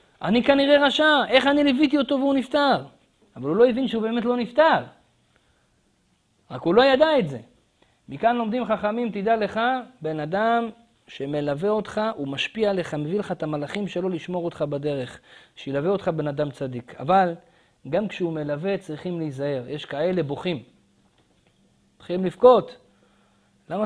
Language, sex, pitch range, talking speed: Hebrew, male, 150-230 Hz, 150 wpm